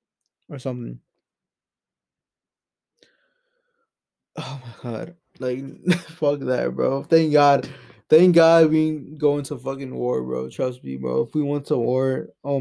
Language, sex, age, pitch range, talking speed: English, male, 20-39, 135-185 Hz, 135 wpm